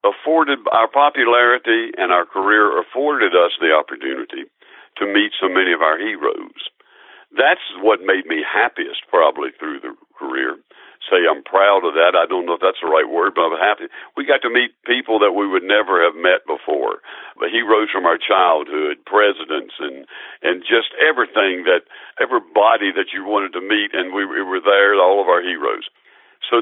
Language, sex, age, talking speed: English, male, 60-79, 185 wpm